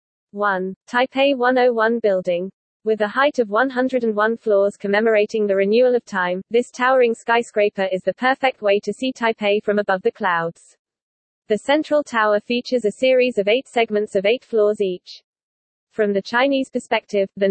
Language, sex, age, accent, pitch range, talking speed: English, female, 20-39, British, 200-240 Hz, 160 wpm